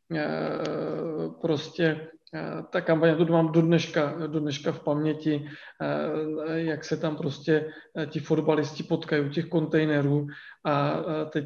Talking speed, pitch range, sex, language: 110 wpm, 150-165 Hz, male, Czech